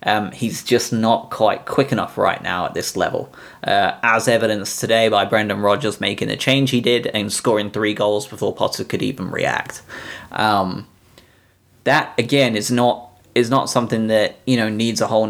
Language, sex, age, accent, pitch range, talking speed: English, male, 20-39, British, 105-125 Hz, 185 wpm